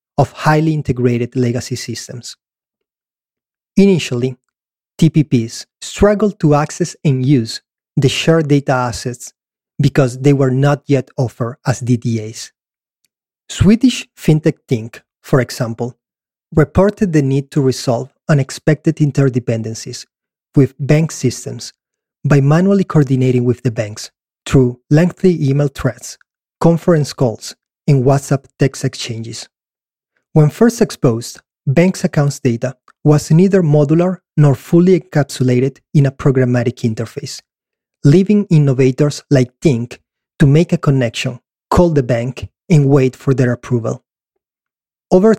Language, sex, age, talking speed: English, male, 30-49, 115 wpm